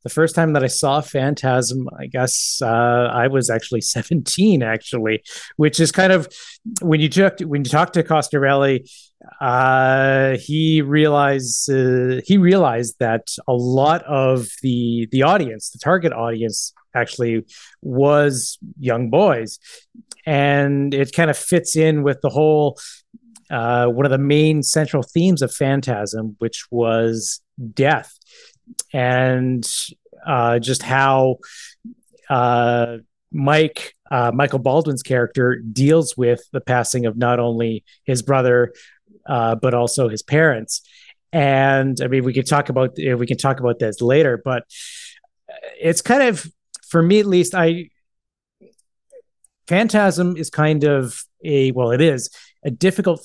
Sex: male